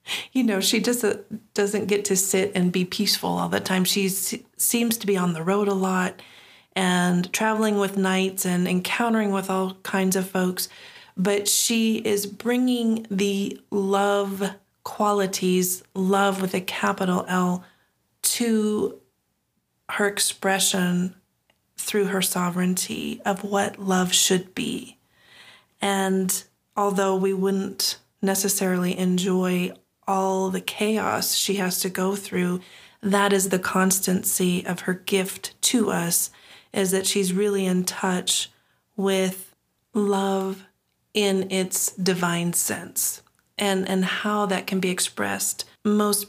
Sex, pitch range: female, 185-205 Hz